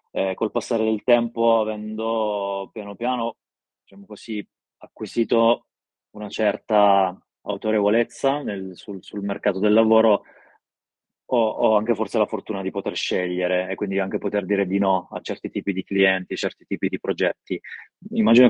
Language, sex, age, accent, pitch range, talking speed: Italian, male, 20-39, native, 95-110 Hz, 150 wpm